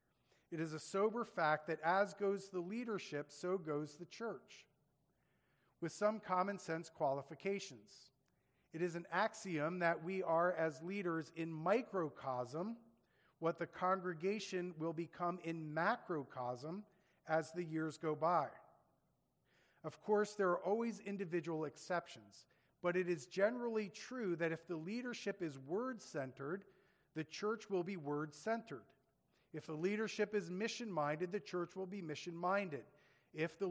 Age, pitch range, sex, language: 40-59, 155-200 Hz, male, English